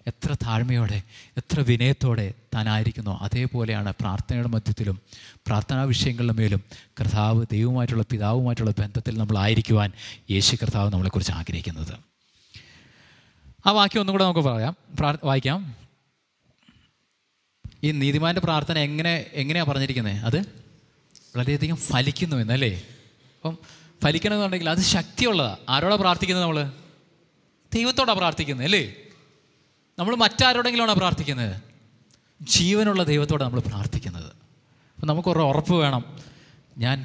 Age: 20-39